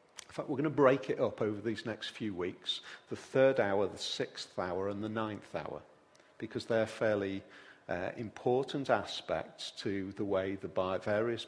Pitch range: 100-130 Hz